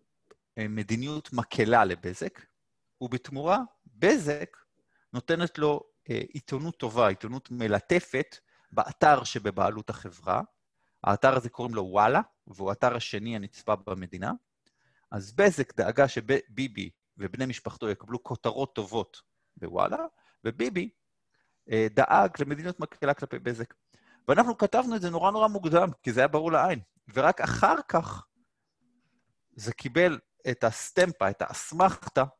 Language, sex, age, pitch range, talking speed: Hebrew, male, 30-49, 110-145 Hz, 120 wpm